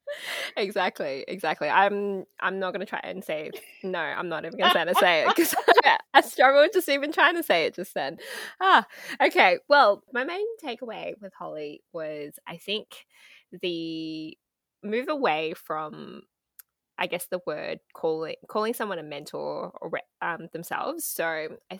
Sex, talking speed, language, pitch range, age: female, 160 wpm, English, 165-240 Hz, 20-39